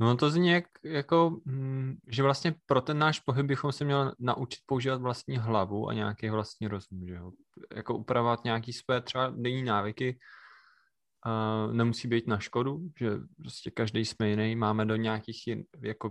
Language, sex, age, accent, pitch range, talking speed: Czech, male, 20-39, native, 110-130 Hz, 170 wpm